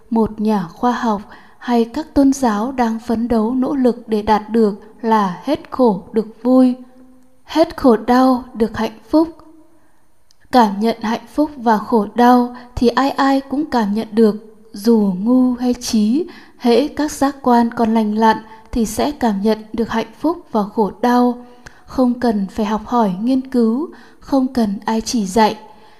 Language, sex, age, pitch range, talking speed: Vietnamese, female, 20-39, 220-255 Hz, 170 wpm